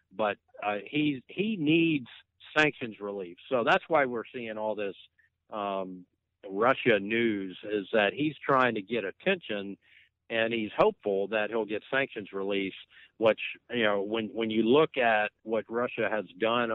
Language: English